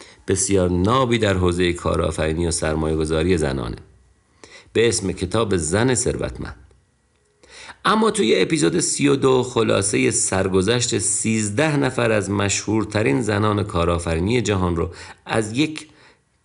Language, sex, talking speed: Persian, male, 105 wpm